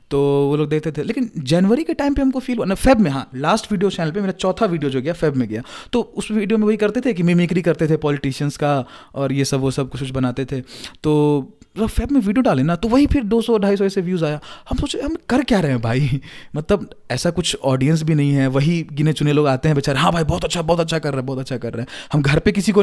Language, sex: English, male